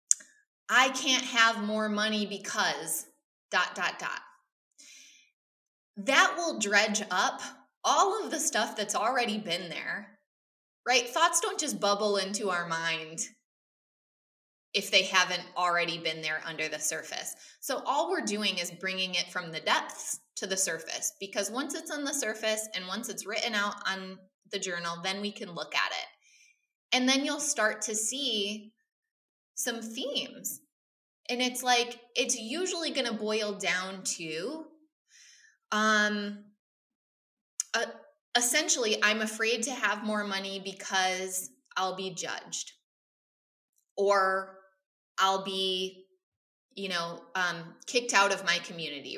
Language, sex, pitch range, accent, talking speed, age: English, female, 190-245 Hz, American, 140 wpm, 20-39